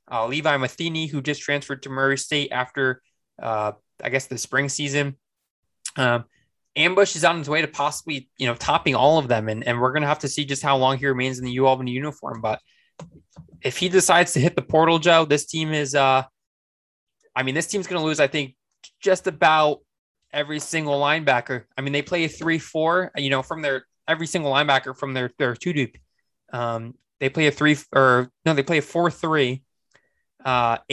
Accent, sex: American, male